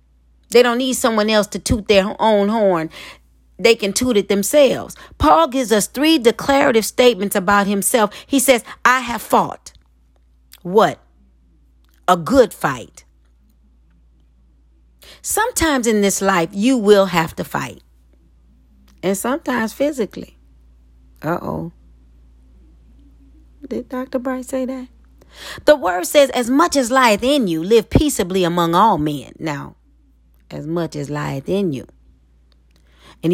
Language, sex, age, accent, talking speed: English, female, 40-59, American, 130 wpm